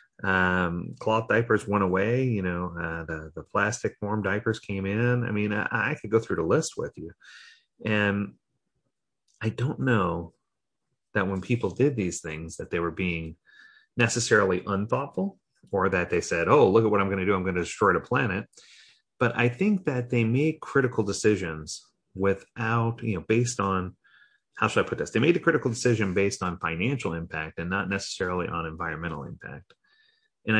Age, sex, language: 30-49, male, English